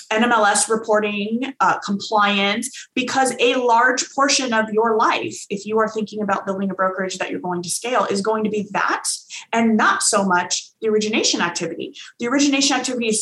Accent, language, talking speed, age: American, English, 180 wpm, 20-39